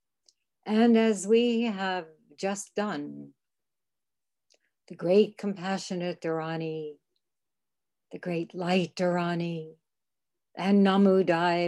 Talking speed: 85 wpm